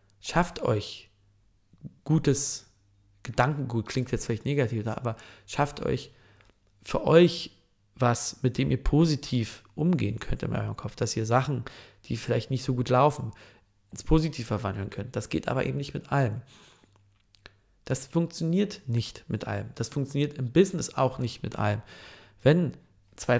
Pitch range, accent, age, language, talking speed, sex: 100-140 Hz, German, 40-59, German, 150 wpm, male